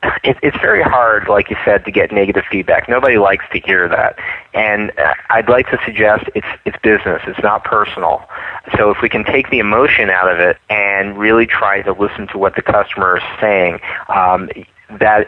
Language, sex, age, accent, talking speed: English, male, 40-59, American, 190 wpm